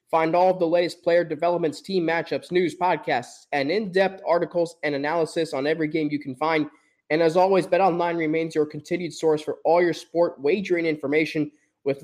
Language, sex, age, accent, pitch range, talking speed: English, male, 20-39, American, 150-180 Hz, 185 wpm